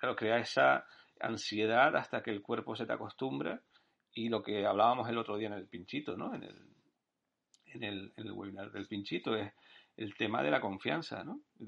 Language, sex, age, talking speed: Spanish, male, 40-59, 200 wpm